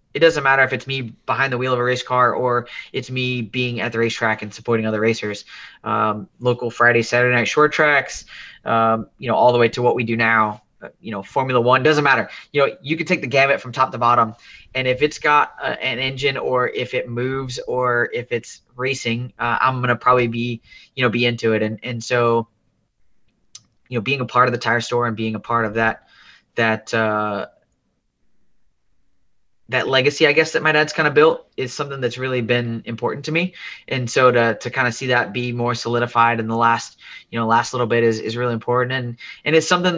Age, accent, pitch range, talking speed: 20-39, American, 115-130 Hz, 225 wpm